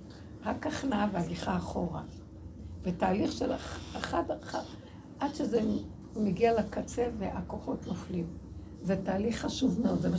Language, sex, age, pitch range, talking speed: Hebrew, female, 60-79, 170-275 Hz, 110 wpm